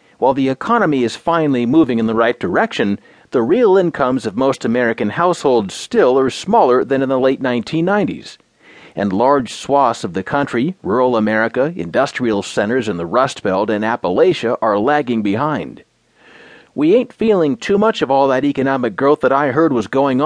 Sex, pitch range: male, 115-160 Hz